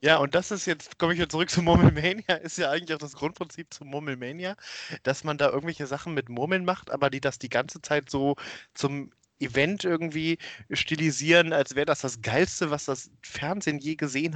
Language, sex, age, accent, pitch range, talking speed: German, male, 30-49, German, 135-165 Hz, 200 wpm